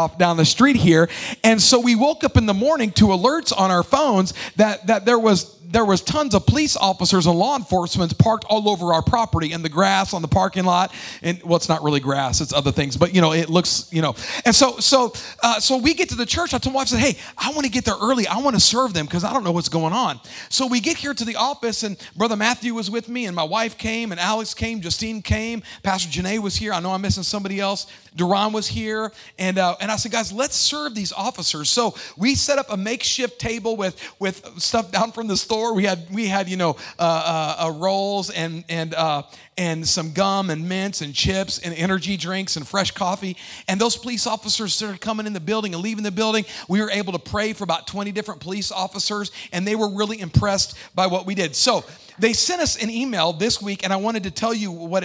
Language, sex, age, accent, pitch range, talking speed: English, male, 40-59, American, 180-225 Hz, 245 wpm